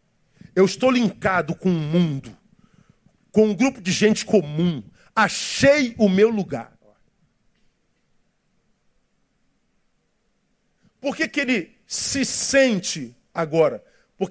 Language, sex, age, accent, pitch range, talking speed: Portuguese, male, 50-69, Brazilian, 160-210 Hz, 105 wpm